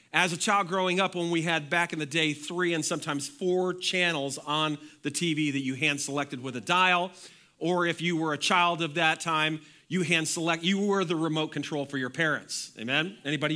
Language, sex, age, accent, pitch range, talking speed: English, male, 40-59, American, 155-190 Hz, 210 wpm